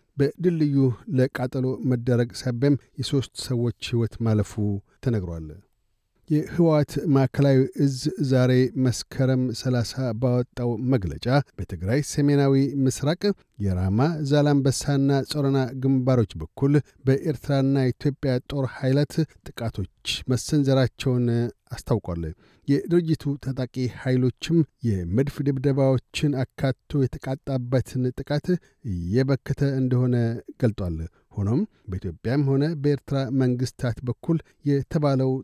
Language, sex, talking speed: Amharic, male, 85 wpm